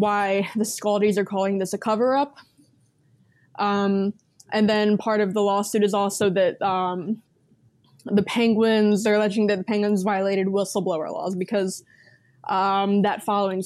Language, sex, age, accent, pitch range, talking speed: English, female, 20-39, American, 195-220 Hz, 145 wpm